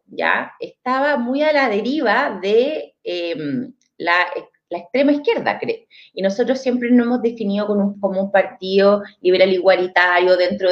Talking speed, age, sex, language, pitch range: 145 wpm, 30-49, female, Spanish, 200-280 Hz